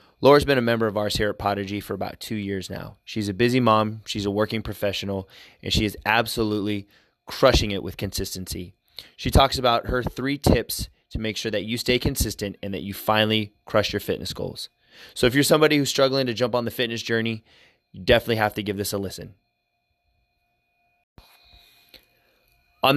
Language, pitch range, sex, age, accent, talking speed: English, 100-120 Hz, male, 20-39, American, 190 wpm